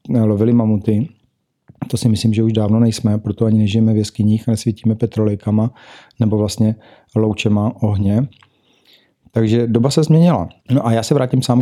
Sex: male